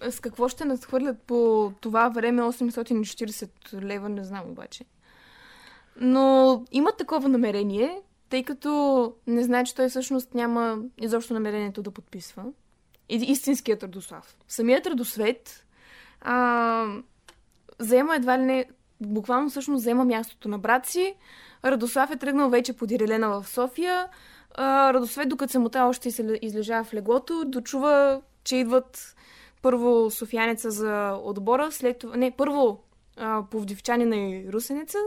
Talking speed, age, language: 130 wpm, 20-39, Bulgarian